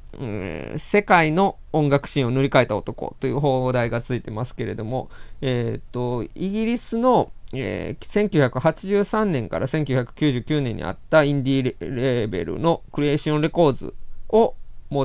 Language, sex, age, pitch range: Japanese, male, 20-39, 120-170 Hz